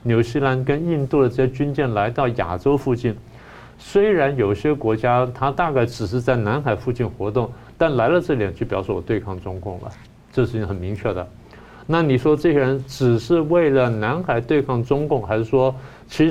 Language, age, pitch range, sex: Chinese, 50-69, 105-140 Hz, male